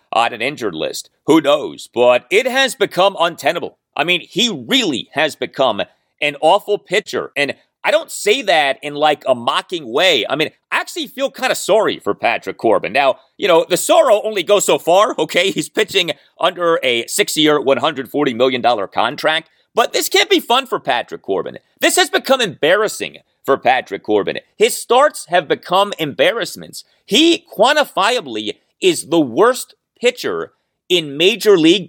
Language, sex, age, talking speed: English, male, 30-49, 165 wpm